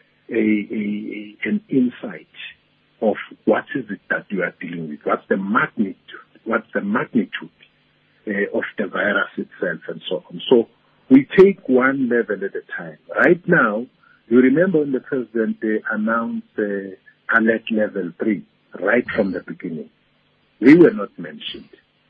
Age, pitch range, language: 50-69, 105-155 Hz, English